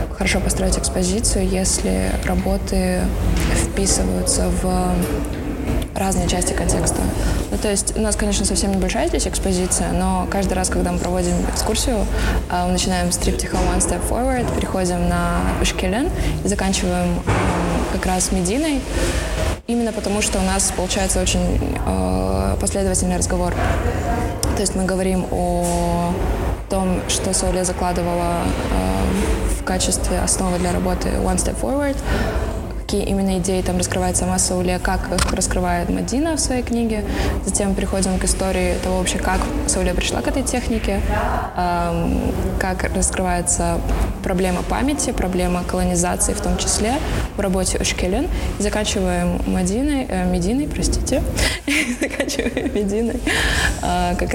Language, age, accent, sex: Russian, 20-39, native, female